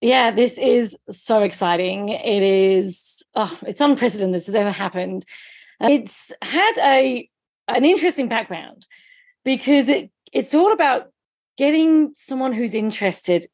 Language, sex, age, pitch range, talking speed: English, female, 40-59, 185-250 Hz, 130 wpm